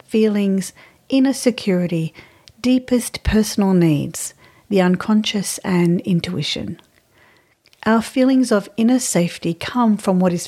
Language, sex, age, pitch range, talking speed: English, female, 50-69, 170-215 Hz, 110 wpm